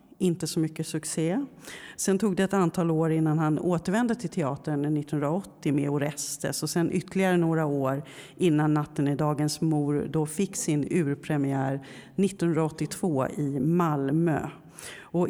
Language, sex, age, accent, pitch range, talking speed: Swedish, female, 40-59, native, 150-185 Hz, 140 wpm